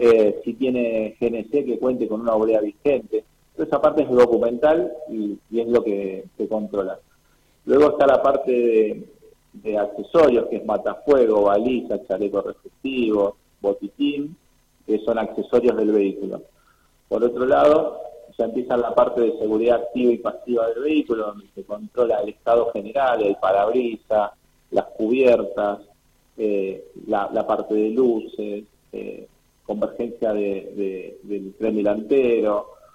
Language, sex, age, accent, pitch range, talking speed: Spanish, male, 40-59, Argentinian, 105-130 Hz, 135 wpm